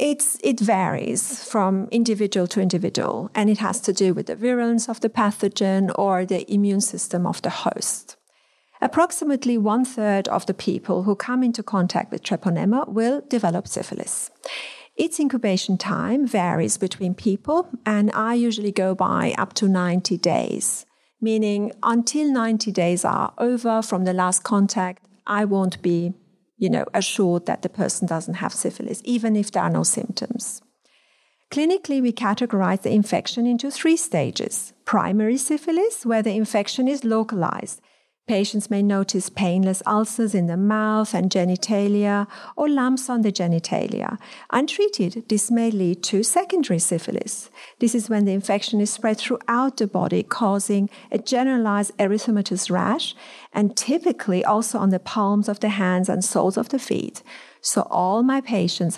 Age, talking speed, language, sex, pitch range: 40-59, 155 wpm, English, female, 195-245 Hz